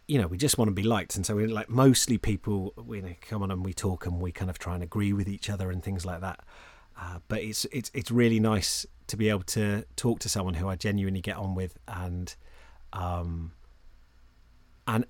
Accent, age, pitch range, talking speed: British, 30-49, 100-125 Hz, 235 wpm